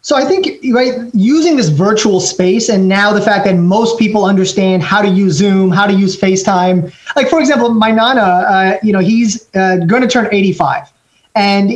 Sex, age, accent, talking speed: male, 20-39, American, 195 wpm